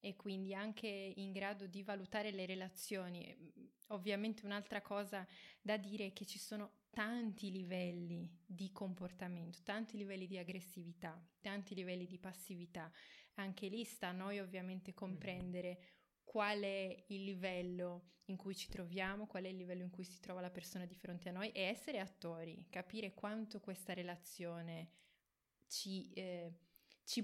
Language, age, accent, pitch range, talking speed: Italian, 20-39, native, 185-205 Hz, 150 wpm